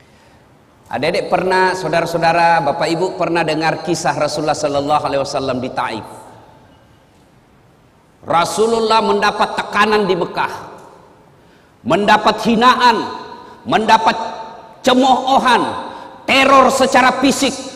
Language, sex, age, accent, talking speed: Indonesian, male, 40-59, native, 90 wpm